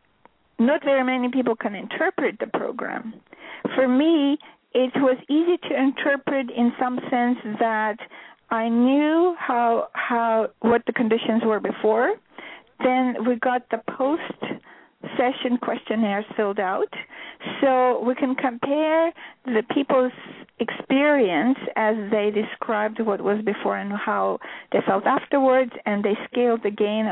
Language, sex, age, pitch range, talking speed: English, female, 40-59, 230-280 Hz, 135 wpm